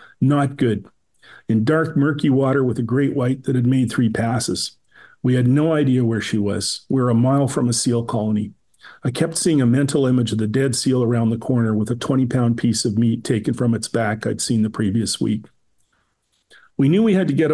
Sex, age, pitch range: male, 40-59, 115-135 Hz